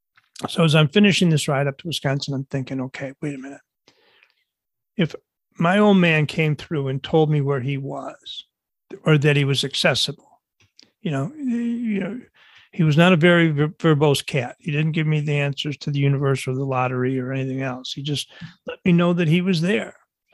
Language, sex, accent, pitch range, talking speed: English, male, American, 145-190 Hz, 190 wpm